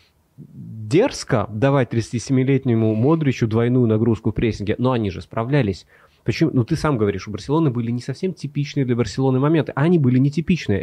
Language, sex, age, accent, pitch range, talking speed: Russian, male, 20-39, native, 105-135 Hz, 160 wpm